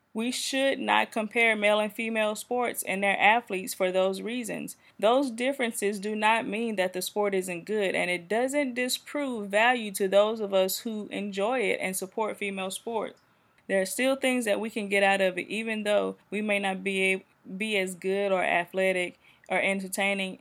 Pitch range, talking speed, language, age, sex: 190-225 Hz, 190 wpm, English, 20-39, female